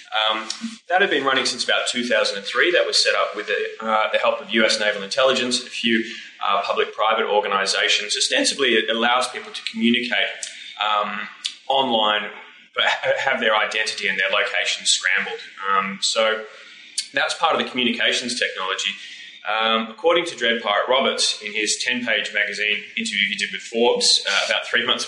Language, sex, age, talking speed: English, male, 20-39, 165 wpm